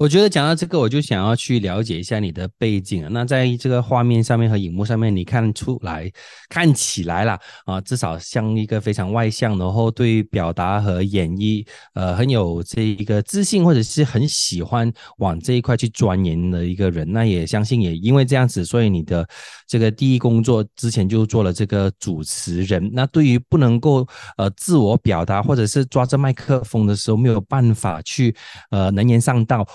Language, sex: English, male